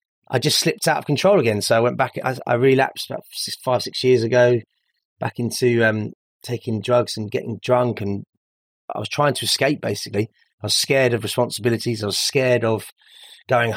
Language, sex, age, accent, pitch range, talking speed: English, male, 30-49, British, 105-130 Hz, 190 wpm